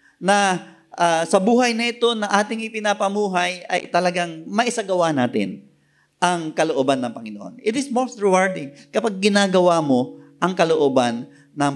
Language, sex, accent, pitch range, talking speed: Filipino, male, native, 155-235 Hz, 140 wpm